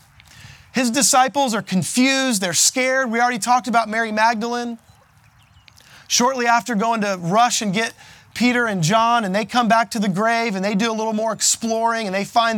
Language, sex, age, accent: English, male, 30-49, American